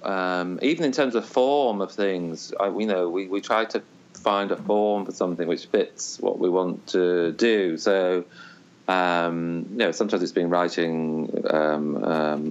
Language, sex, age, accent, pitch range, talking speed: English, male, 30-49, British, 85-95 Hz, 175 wpm